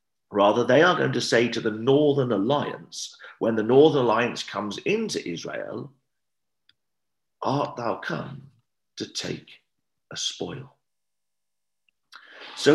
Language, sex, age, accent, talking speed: English, male, 50-69, British, 120 wpm